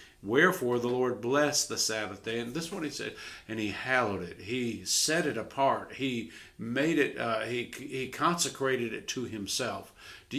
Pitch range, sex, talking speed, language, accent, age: 110-135 Hz, male, 185 wpm, English, American, 50-69